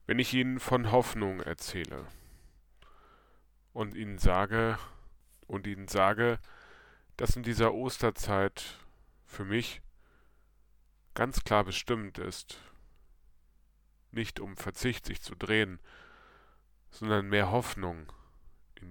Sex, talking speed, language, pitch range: male, 100 wpm, German, 80-105 Hz